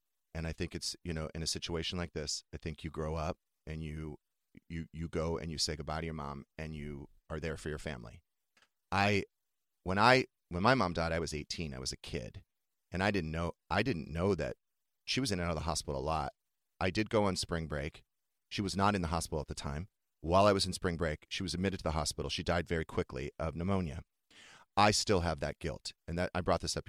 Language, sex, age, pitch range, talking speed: English, male, 30-49, 80-100 Hz, 250 wpm